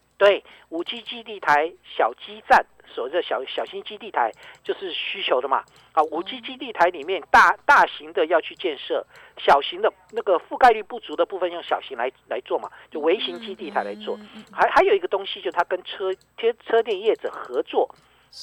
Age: 50-69